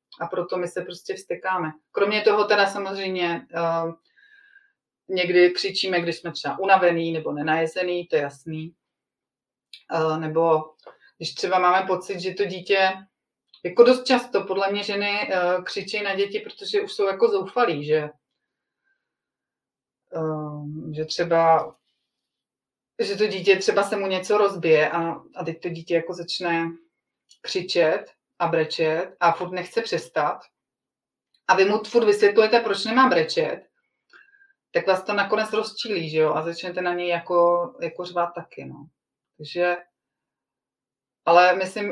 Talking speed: 140 wpm